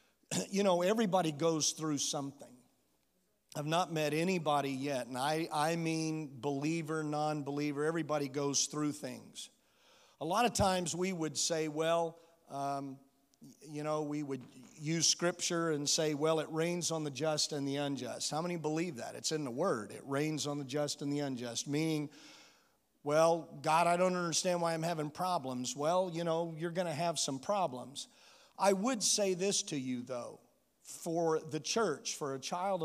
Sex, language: male, English